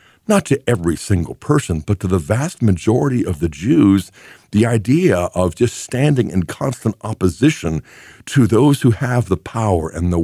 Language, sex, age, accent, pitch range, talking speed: English, male, 60-79, American, 90-125 Hz, 170 wpm